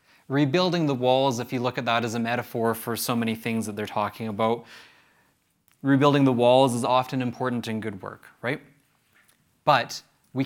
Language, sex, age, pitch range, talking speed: English, male, 20-39, 115-140 Hz, 180 wpm